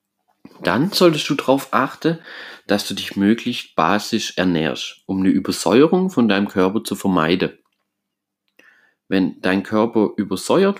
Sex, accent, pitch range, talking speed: male, German, 90-105 Hz, 130 wpm